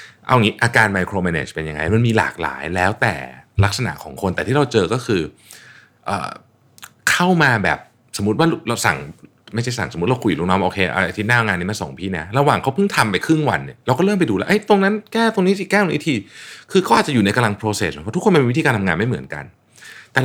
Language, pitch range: Thai, 90-130 Hz